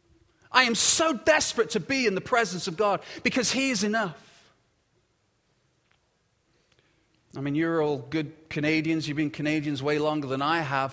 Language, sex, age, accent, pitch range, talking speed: English, male, 30-49, British, 150-235 Hz, 160 wpm